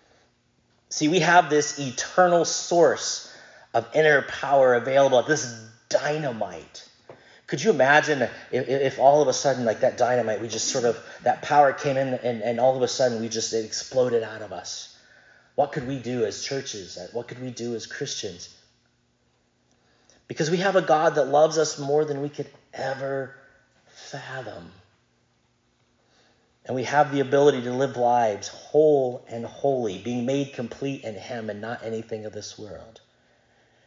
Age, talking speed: 30-49, 165 wpm